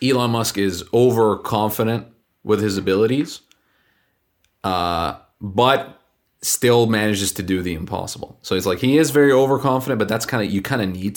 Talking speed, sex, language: 160 wpm, male, English